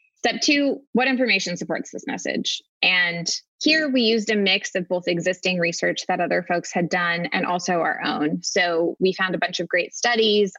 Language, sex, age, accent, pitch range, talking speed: English, female, 20-39, American, 175-210 Hz, 195 wpm